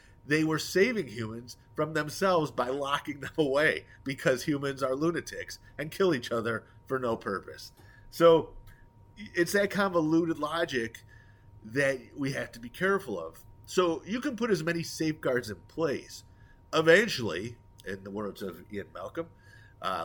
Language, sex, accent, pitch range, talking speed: English, male, American, 105-145 Hz, 150 wpm